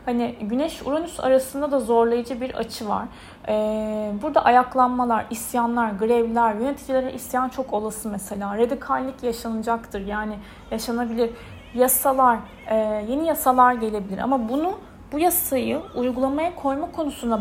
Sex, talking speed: female, 115 wpm